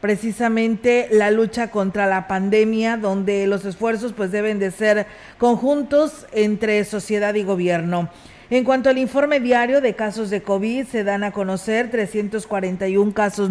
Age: 40-59